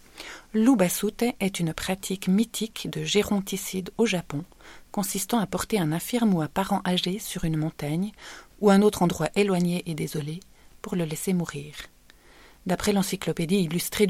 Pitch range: 165-210 Hz